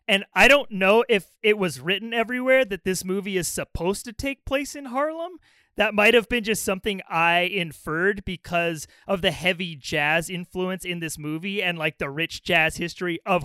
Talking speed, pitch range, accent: 185 wpm, 165-205 Hz, American